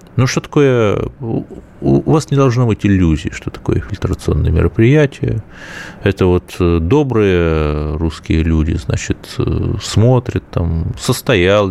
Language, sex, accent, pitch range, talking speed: Russian, male, native, 80-115 Hz, 115 wpm